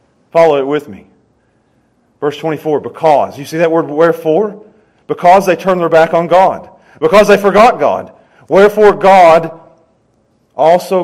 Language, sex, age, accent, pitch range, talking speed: English, male, 40-59, American, 135-180 Hz, 140 wpm